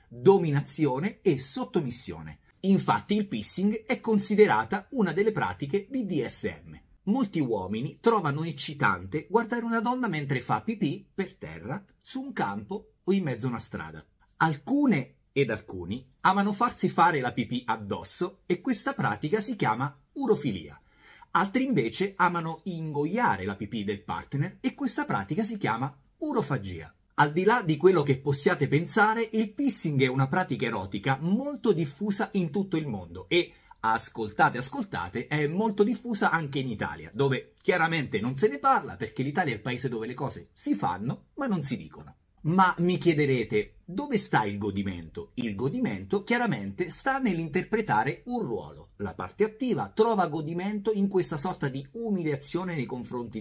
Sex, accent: male, native